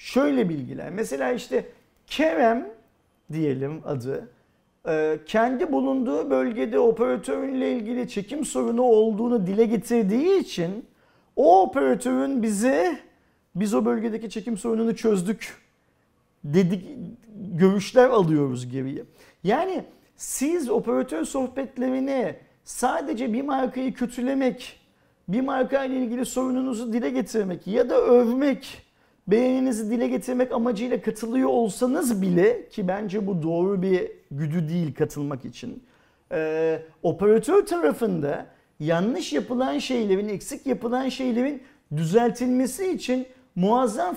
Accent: native